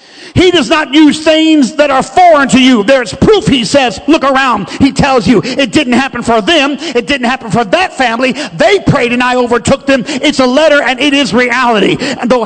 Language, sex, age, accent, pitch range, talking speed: English, male, 50-69, American, 255-310 Hz, 215 wpm